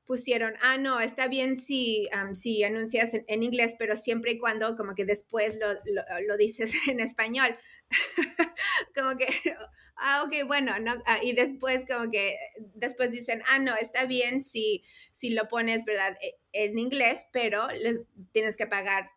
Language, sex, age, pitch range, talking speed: Spanish, female, 20-39, 210-255 Hz, 170 wpm